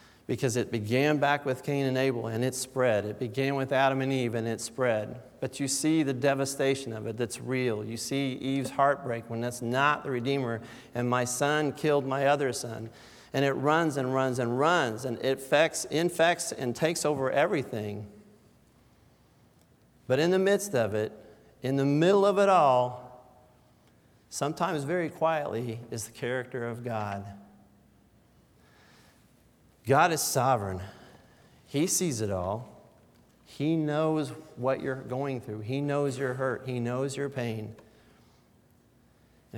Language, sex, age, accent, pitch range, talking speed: English, male, 50-69, American, 120-140 Hz, 155 wpm